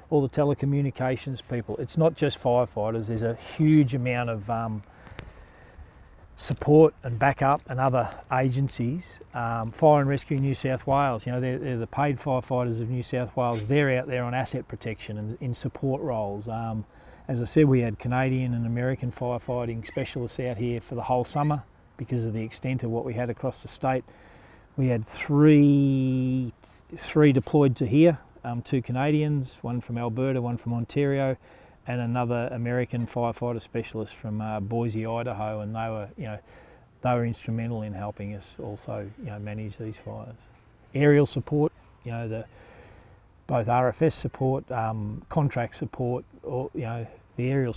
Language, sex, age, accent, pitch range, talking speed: English, male, 40-59, Australian, 110-130 Hz, 170 wpm